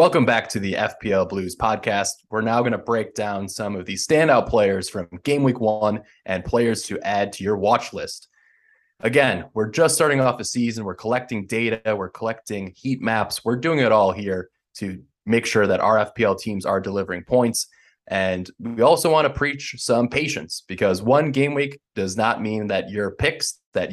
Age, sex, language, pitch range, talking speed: 20-39, male, English, 100-125 Hz, 195 wpm